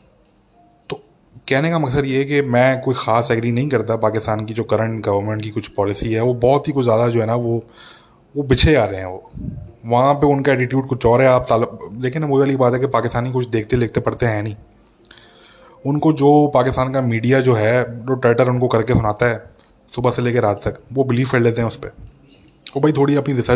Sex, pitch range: male, 115-135 Hz